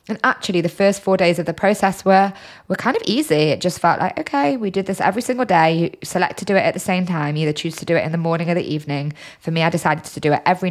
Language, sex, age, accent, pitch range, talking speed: English, female, 20-39, British, 155-190 Hz, 305 wpm